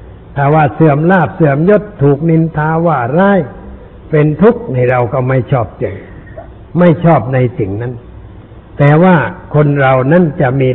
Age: 60-79